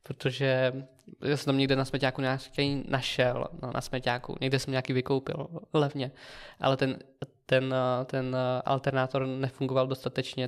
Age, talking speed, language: 20-39, 125 wpm, Czech